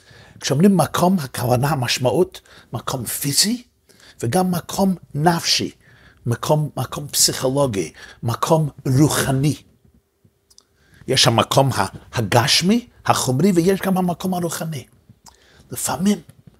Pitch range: 130-185 Hz